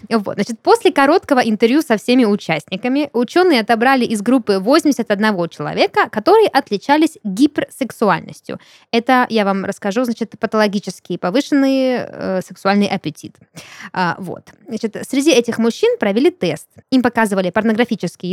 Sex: female